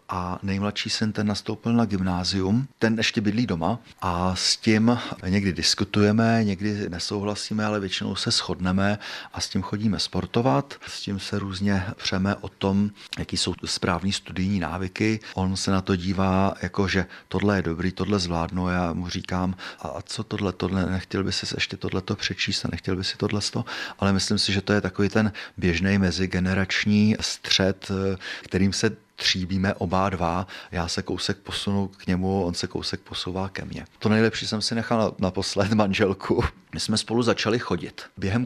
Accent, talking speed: native, 175 wpm